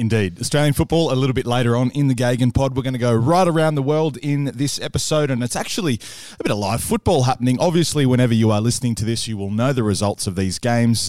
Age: 20-39